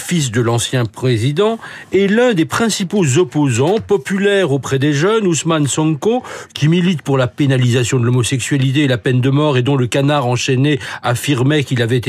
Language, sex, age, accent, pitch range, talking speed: French, male, 50-69, French, 130-175 Hz, 175 wpm